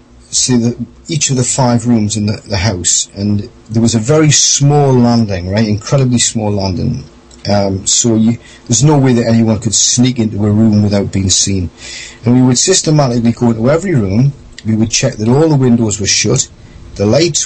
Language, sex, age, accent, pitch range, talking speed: English, male, 40-59, British, 105-125 Hz, 195 wpm